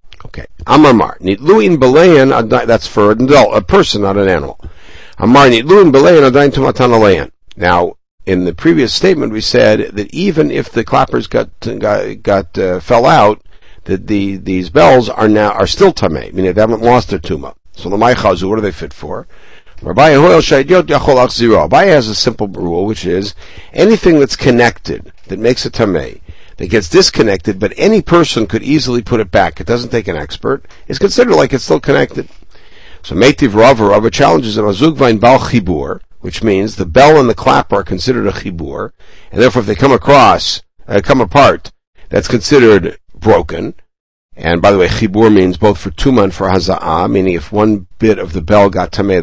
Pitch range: 95-115 Hz